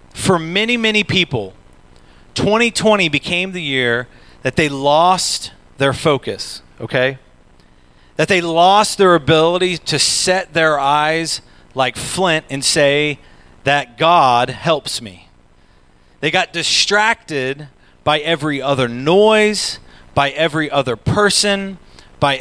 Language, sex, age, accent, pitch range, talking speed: English, male, 40-59, American, 130-195 Hz, 115 wpm